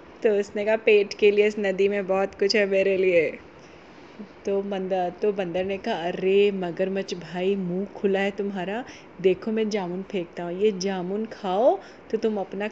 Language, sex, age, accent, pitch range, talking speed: Hindi, female, 30-49, native, 200-270 Hz, 180 wpm